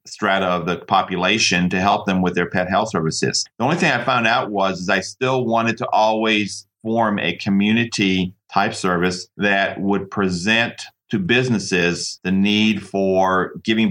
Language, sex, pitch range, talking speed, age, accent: English, male, 95-110 Hz, 170 wpm, 50-69, American